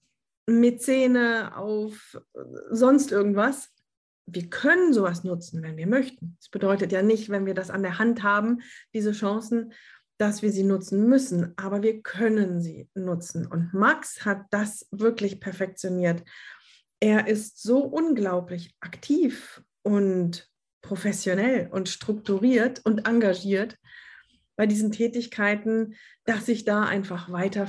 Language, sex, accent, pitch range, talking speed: German, female, German, 190-225 Hz, 130 wpm